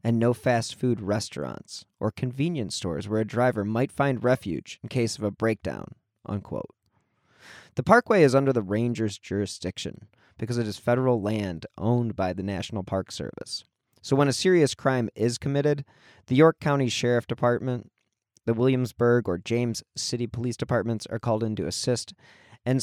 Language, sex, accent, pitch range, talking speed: English, male, American, 105-130 Hz, 165 wpm